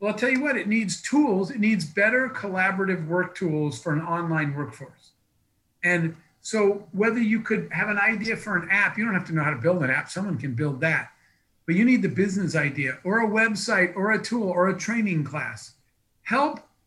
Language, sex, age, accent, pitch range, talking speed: English, male, 50-69, American, 165-220 Hz, 215 wpm